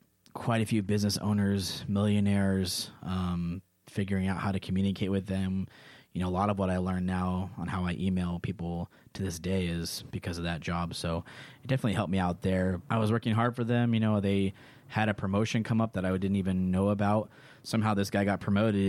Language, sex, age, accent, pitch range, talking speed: English, male, 20-39, American, 90-110 Hz, 215 wpm